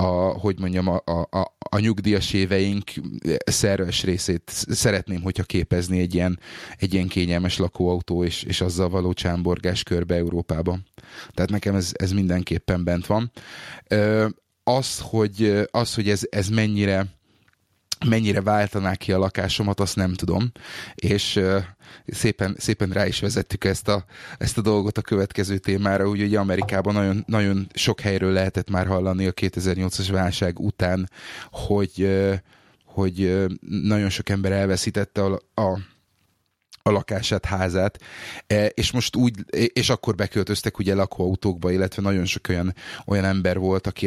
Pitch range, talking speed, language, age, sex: 95-105 Hz, 135 wpm, Hungarian, 30-49, male